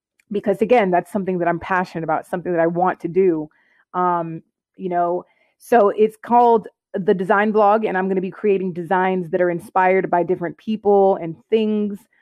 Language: English